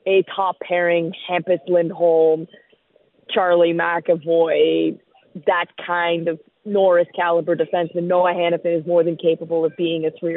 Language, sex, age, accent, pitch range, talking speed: English, female, 20-39, American, 160-185 Hz, 125 wpm